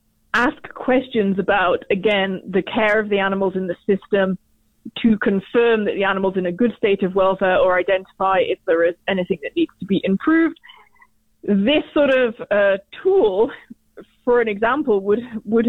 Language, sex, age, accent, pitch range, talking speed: English, female, 20-39, British, 195-245 Hz, 170 wpm